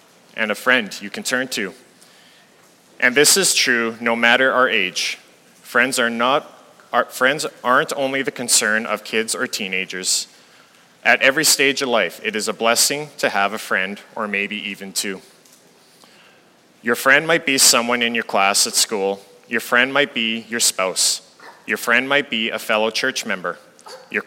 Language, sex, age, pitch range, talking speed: English, male, 30-49, 105-130 Hz, 175 wpm